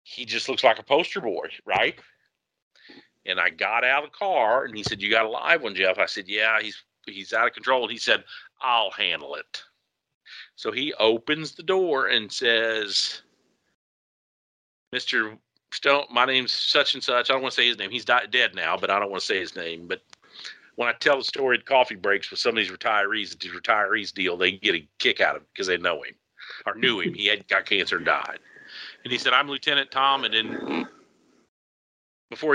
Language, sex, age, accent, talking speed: English, male, 50-69, American, 215 wpm